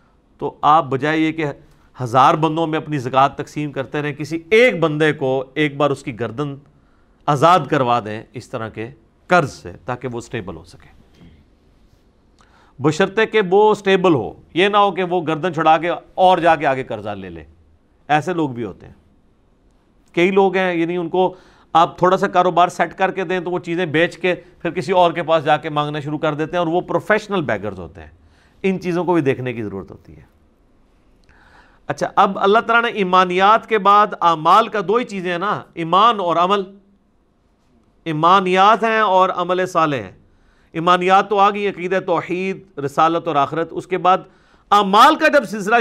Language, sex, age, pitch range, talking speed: Urdu, male, 40-59, 145-190 Hz, 190 wpm